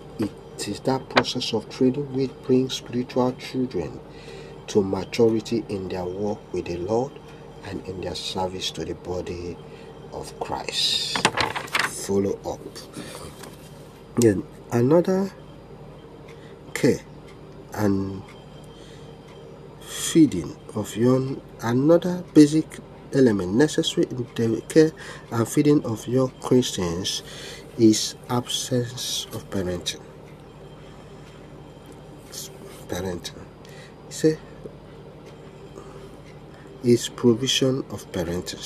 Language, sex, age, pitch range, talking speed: English, male, 50-69, 105-150 Hz, 90 wpm